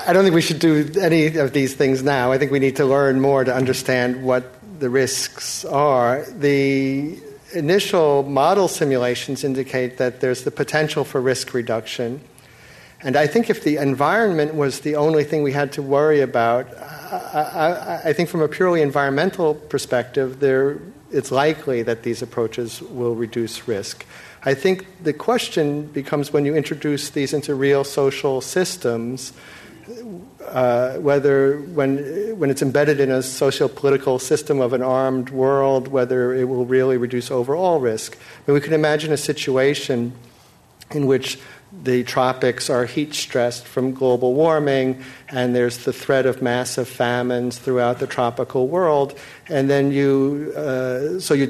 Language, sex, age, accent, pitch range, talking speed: English, male, 50-69, American, 125-145 Hz, 160 wpm